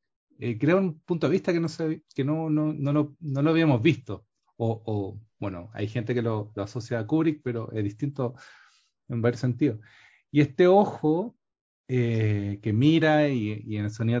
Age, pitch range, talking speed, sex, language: 30-49, 110-145 Hz, 200 wpm, male, Spanish